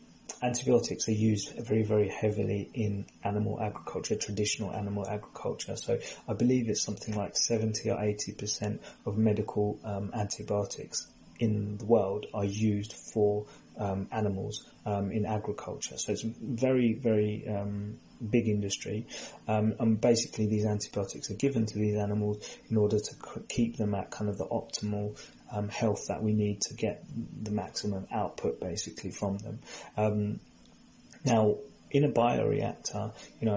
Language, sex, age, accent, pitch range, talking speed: English, male, 20-39, British, 105-115 Hz, 150 wpm